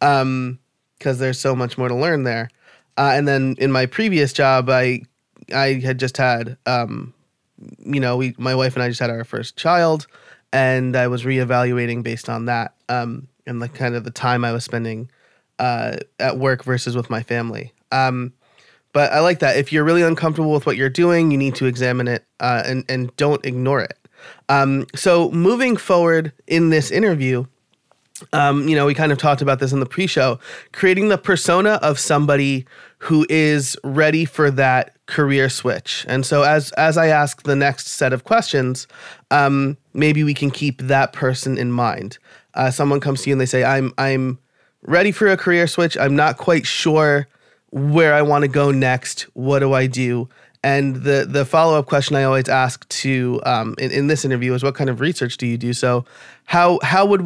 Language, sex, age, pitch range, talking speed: English, male, 20-39, 125-150 Hz, 195 wpm